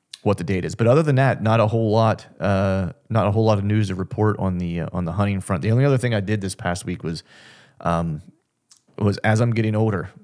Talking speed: 260 wpm